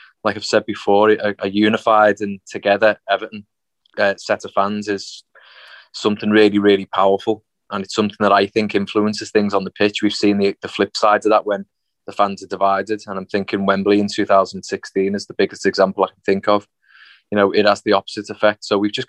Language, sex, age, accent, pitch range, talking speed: English, male, 20-39, British, 100-110 Hz, 210 wpm